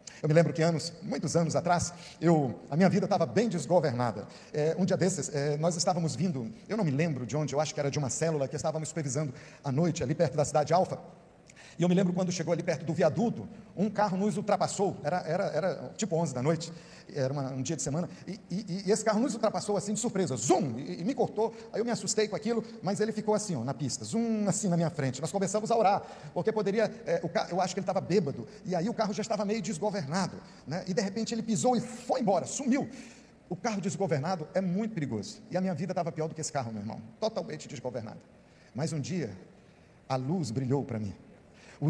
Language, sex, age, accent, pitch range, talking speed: Portuguese, male, 40-59, Brazilian, 145-190 Hz, 235 wpm